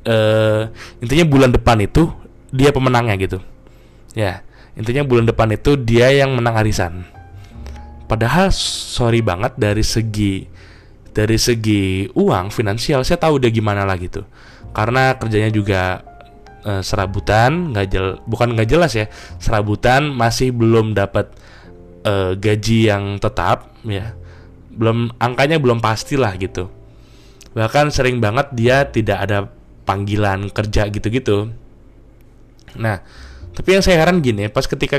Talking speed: 125 wpm